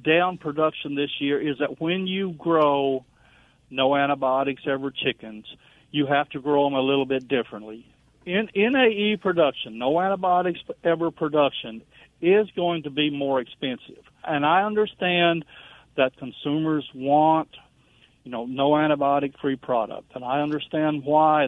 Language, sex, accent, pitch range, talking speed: English, male, American, 135-170 Hz, 140 wpm